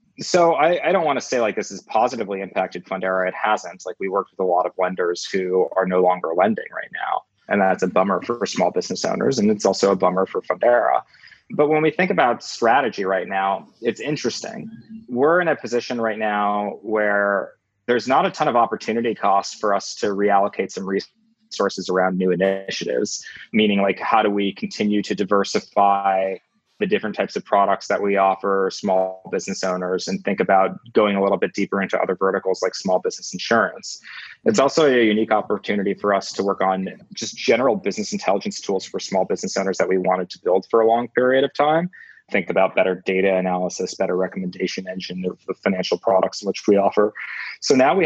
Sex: male